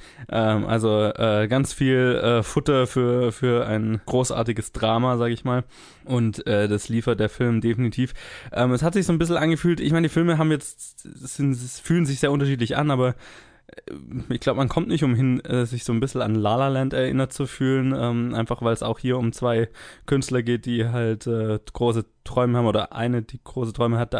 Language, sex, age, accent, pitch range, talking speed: German, male, 20-39, German, 110-130 Hz, 200 wpm